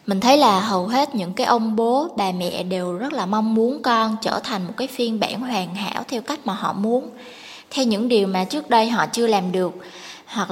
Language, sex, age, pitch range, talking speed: Vietnamese, female, 20-39, 195-255 Hz, 235 wpm